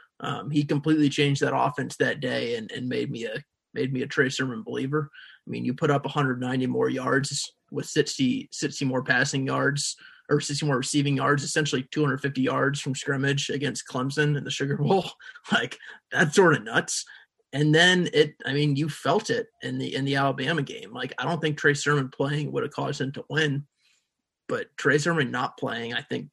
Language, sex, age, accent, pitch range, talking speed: English, male, 20-39, American, 140-170 Hz, 200 wpm